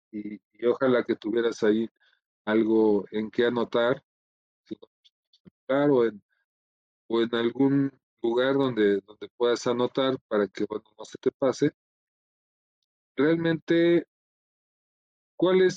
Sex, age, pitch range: male, 40-59, 110-135 Hz